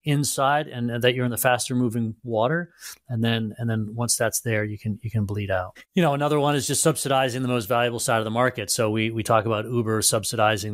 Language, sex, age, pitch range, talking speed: English, male, 30-49, 110-130 Hz, 240 wpm